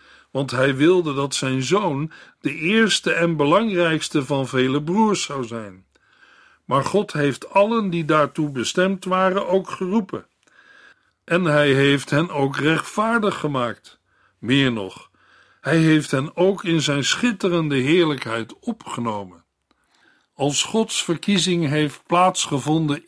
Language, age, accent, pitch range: Dutch, 60-79, Dutch, 140-185 Hz